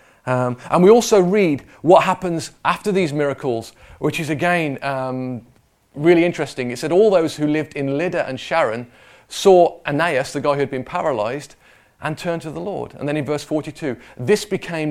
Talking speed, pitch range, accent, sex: 185 wpm, 125-165 Hz, British, male